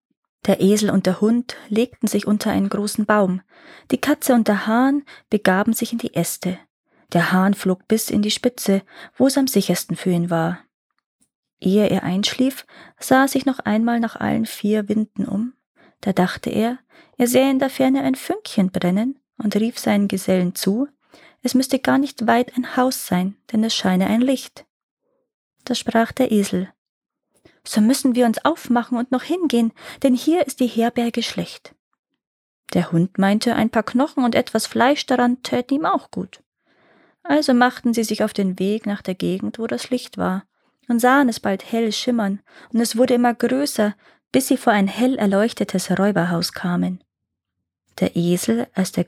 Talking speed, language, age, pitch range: 180 wpm, German, 20-39, 190-250 Hz